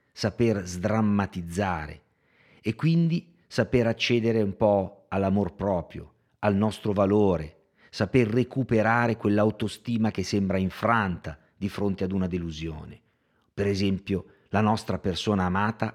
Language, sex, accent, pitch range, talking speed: Italian, male, native, 95-115 Hz, 115 wpm